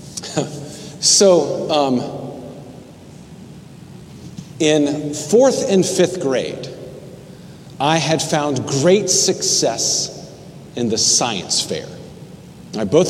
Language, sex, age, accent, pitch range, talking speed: English, male, 40-59, American, 140-175 Hz, 80 wpm